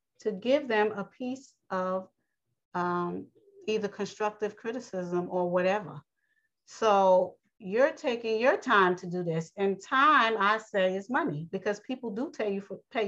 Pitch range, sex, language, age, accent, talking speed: 195-230 Hz, female, English, 40-59, American, 140 wpm